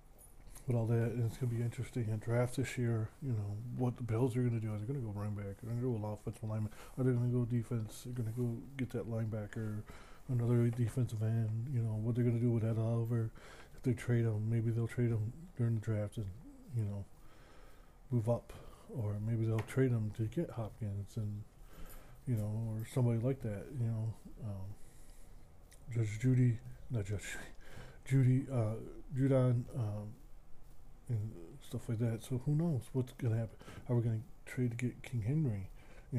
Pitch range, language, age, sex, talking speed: 110-125 Hz, English, 20-39, male, 200 wpm